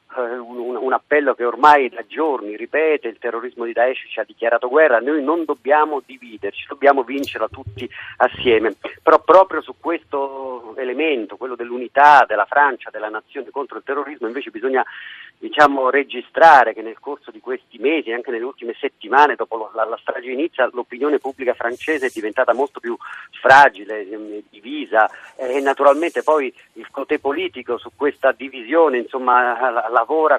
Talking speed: 160 wpm